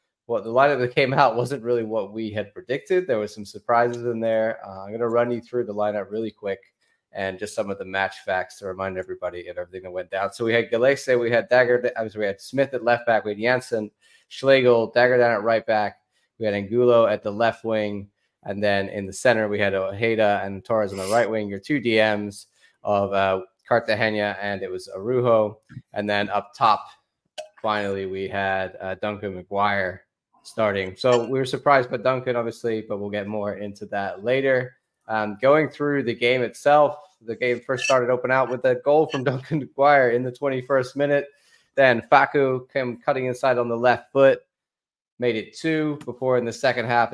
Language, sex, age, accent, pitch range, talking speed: English, male, 20-39, American, 105-125 Hz, 205 wpm